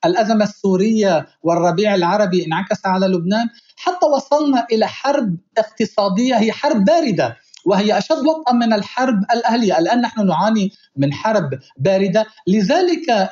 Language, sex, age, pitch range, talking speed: Arabic, male, 50-69, 195-250 Hz, 120 wpm